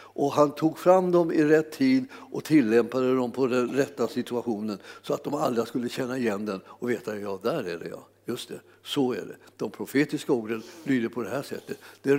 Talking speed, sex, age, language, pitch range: 220 wpm, male, 60-79, Swedish, 140-175 Hz